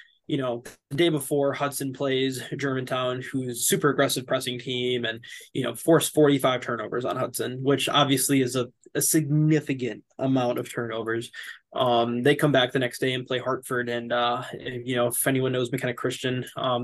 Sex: male